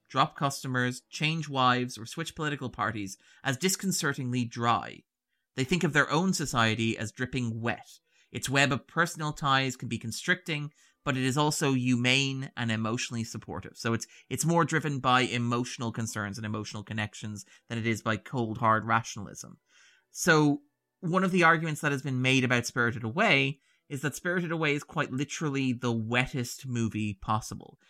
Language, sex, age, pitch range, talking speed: English, male, 30-49, 120-145 Hz, 165 wpm